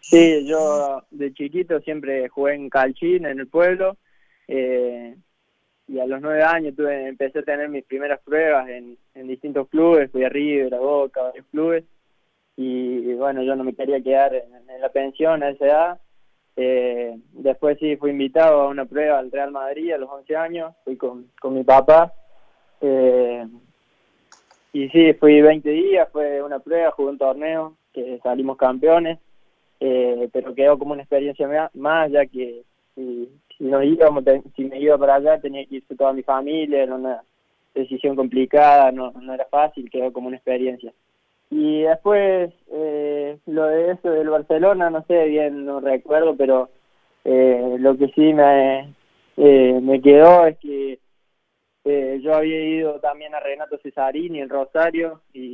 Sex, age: male, 20-39